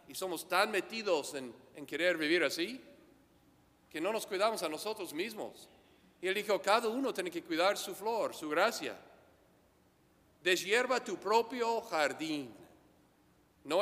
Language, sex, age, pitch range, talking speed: English, male, 50-69, 130-190 Hz, 145 wpm